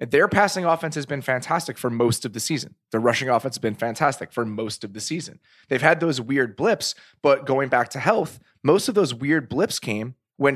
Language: English